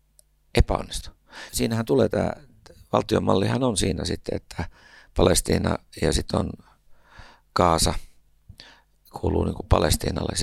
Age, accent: 60-79, native